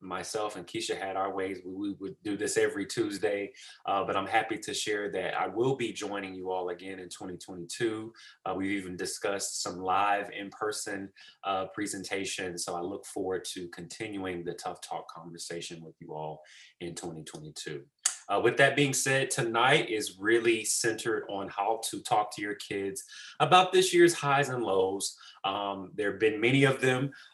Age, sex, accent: 30-49, male, American